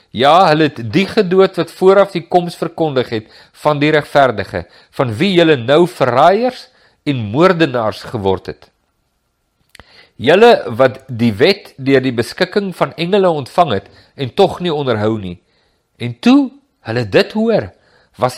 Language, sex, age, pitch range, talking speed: English, male, 50-69, 125-180 Hz, 145 wpm